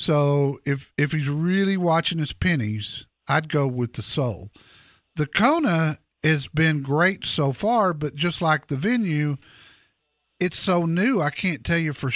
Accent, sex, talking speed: American, male, 165 wpm